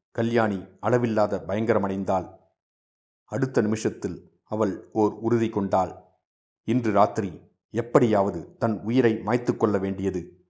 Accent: native